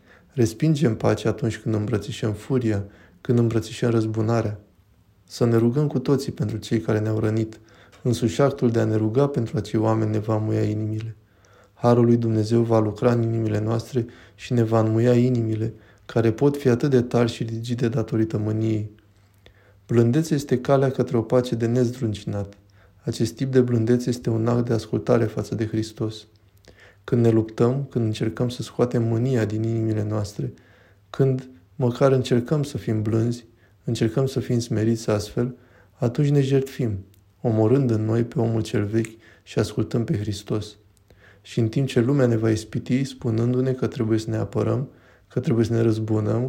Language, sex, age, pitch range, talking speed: Romanian, male, 20-39, 110-125 Hz, 170 wpm